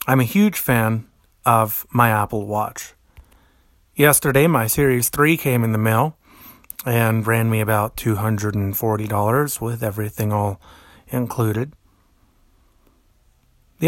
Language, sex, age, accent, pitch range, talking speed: English, male, 30-49, American, 110-165 Hz, 110 wpm